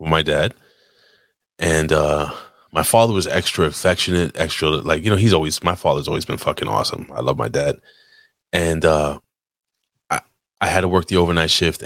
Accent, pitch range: American, 80-105 Hz